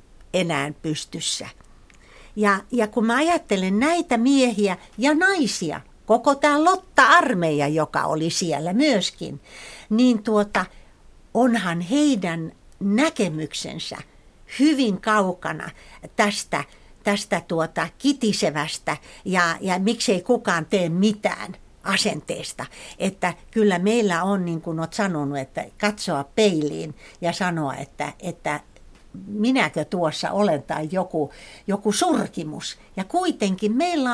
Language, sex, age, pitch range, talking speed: Finnish, female, 60-79, 180-270 Hz, 105 wpm